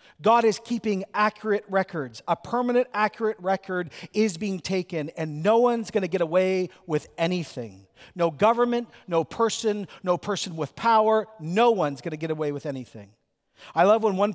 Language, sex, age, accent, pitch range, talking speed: English, male, 40-59, American, 155-215 Hz, 170 wpm